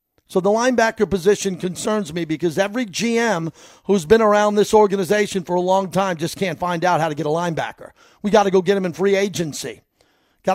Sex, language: male, English